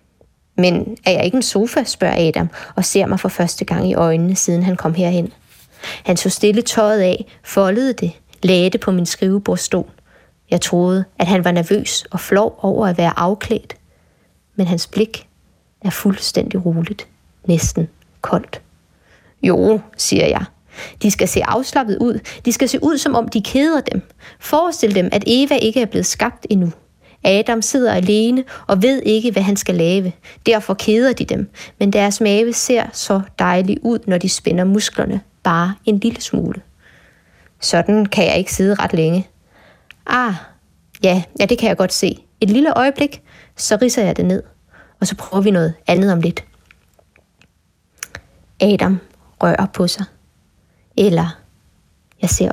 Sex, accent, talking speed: female, native, 165 wpm